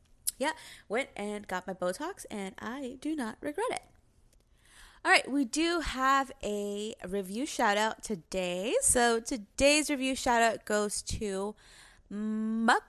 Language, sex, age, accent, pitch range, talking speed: English, female, 20-39, American, 200-265 Hz, 130 wpm